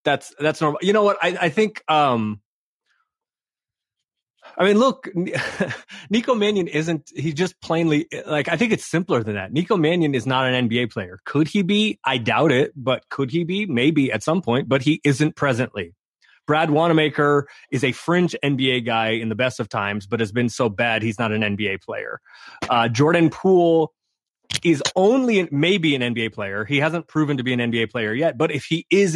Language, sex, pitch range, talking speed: English, male, 120-160 Hz, 195 wpm